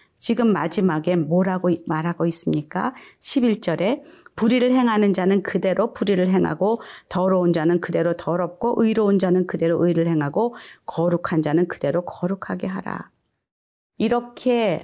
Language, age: Korean, 40-59